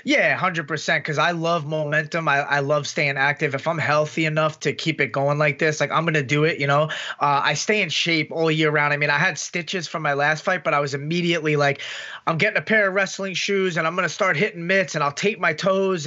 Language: English